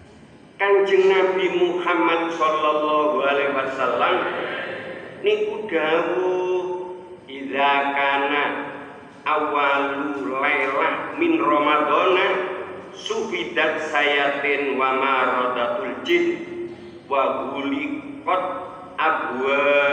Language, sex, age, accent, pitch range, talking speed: Indonesian, male, 50-69, native, 140-190 Hz, 60 wpm